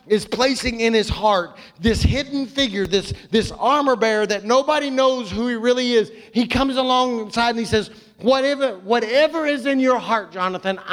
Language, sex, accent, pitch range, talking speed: English, male, American, 180-255 Hz, 175 wpm